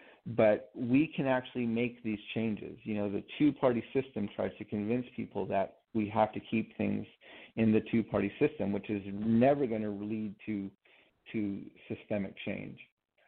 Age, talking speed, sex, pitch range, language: 40-59, 165 wpm, male, 105-120 Hz, English